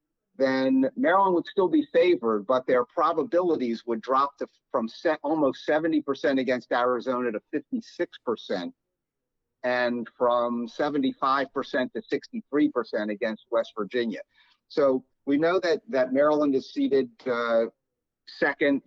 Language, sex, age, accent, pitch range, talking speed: English, male, 50-69, American, 115-145 Hz, 110 wpm